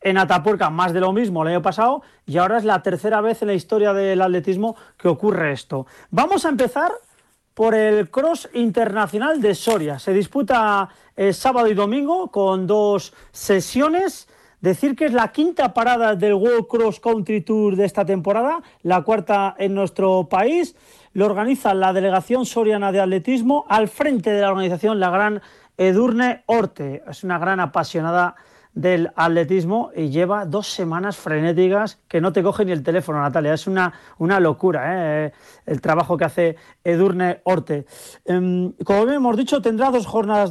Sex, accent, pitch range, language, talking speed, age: male, Spanish, 185-235 Hz, Spanish, 165 wpm, 40-59